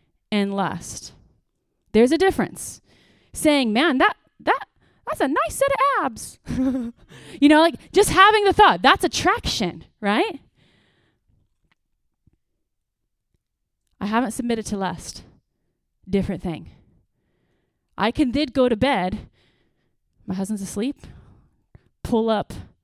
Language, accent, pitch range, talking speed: English, American, 190-280 Hz, 115 wpm